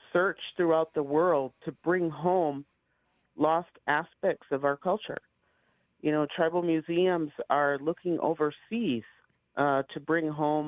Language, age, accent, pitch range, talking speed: English, 50-69, American, 140-170 Hz, 130 wpm